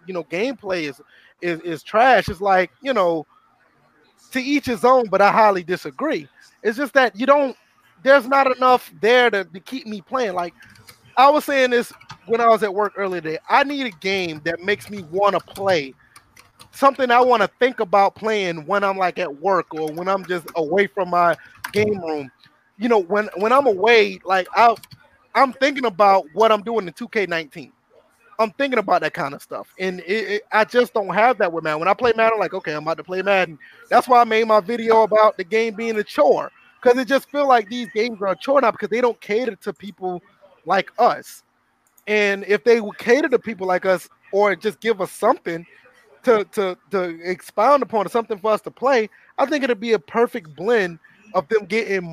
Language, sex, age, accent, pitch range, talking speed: English, male, 20-39, American, 185-235 Hz, 215 wpm